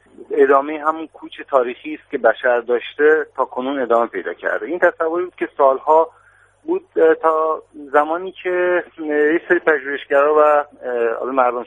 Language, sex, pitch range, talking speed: Persian, male, 125-155 Hz, 145 wpm